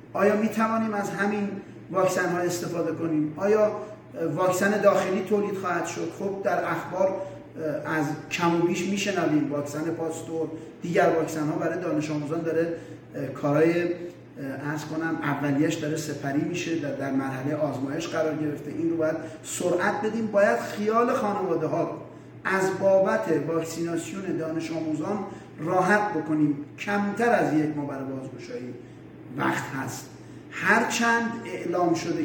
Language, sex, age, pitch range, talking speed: Persian, male, 30-49, 150-190 Hz, 135 wpm